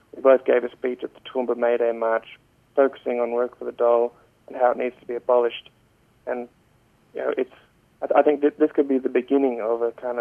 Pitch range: 120-130 Hz